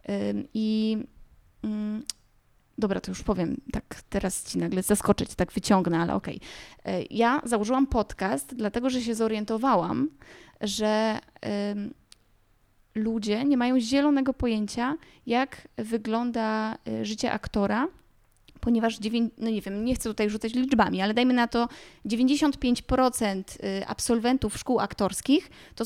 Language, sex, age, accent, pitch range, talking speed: Polish, female, 20-39, native, 205-250 Hz, 120 wpm